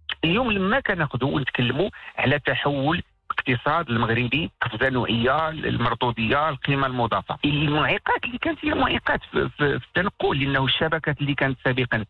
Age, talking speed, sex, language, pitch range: 50-69, 130 wpm, male, English, 125-160 Hz